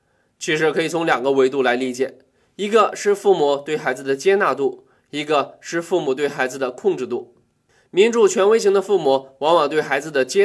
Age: 20-39